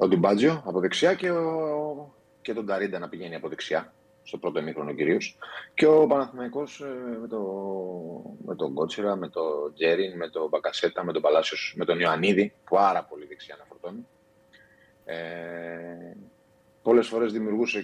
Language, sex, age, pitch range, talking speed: Greek, male, 30-49, 85-125 Hz, 160 wpm